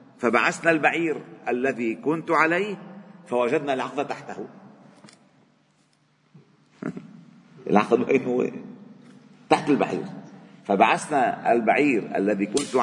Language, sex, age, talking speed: Arabic, male, 50-69, 85 wpm